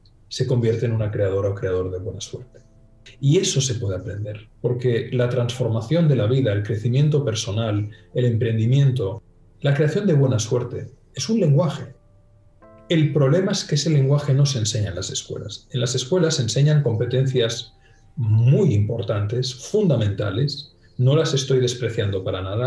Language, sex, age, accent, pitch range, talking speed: Spanish, male, 40-59, Spanish, 105-130 Hz, 160 wpm